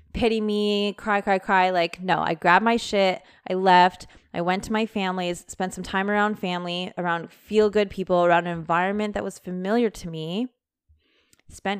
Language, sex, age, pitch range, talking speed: English, female, 20-39, 170-205 Hz, 185 wpm